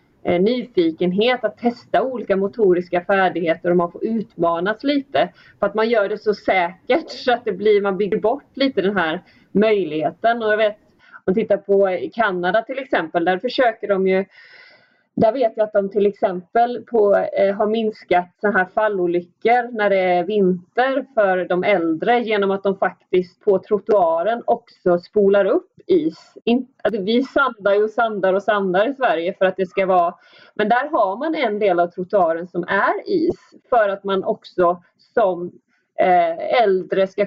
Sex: female